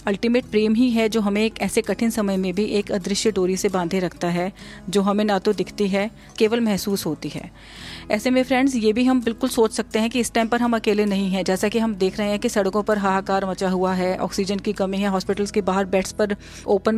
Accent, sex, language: native, female, Hindi